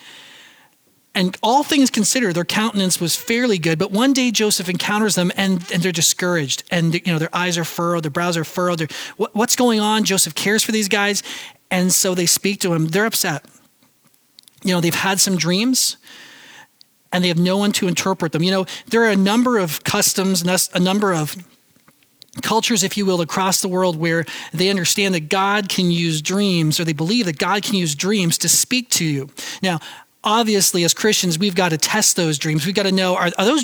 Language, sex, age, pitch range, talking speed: English, male, 40-59, 170-210 Hz, 210 wpm